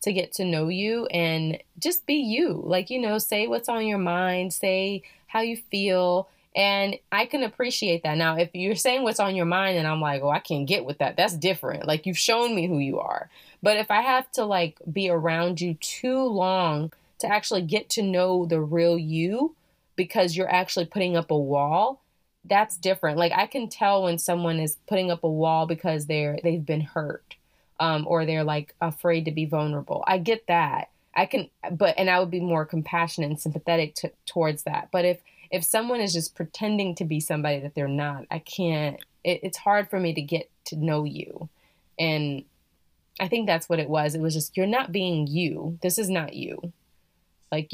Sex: female